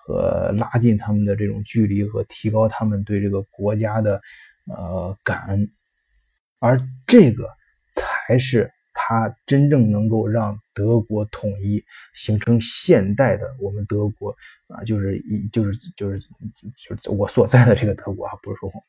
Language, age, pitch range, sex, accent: Chinese, 20-39, 105-125 Hz, male, native